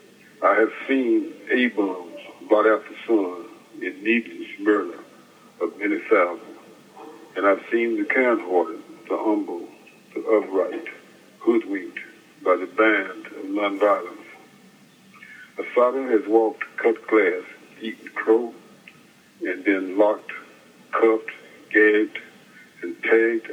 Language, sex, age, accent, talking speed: English, male, 60-79, American, 110 wpm